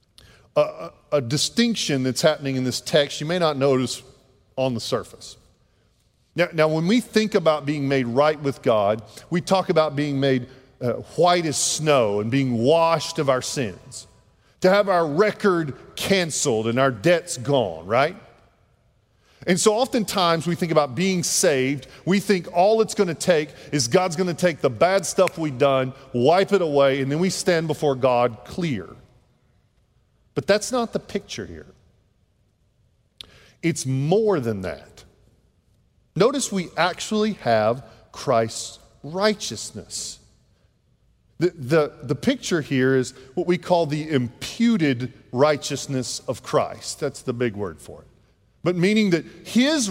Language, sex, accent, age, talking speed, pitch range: English, male, American, 40-59, 150 wpm, 125-180 Hz